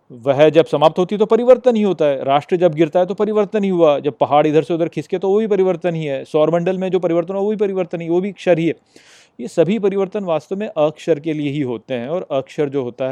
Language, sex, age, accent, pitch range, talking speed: Hindi, male, 30-49, native, 135-190 Hz, 270 wpm